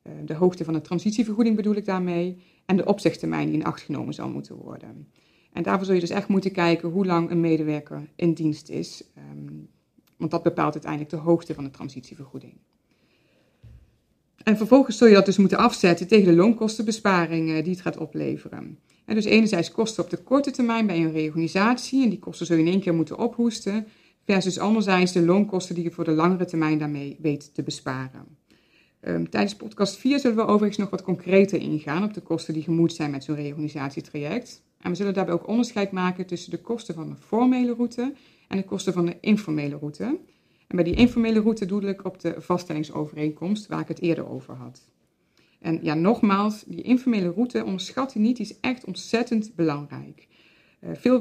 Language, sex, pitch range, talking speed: Dutch, female, 160-210 Hz, 190 wpm